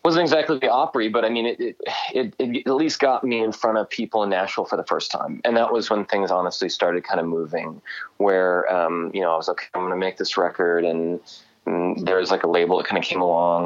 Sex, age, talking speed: male, 30-49, 260 wpm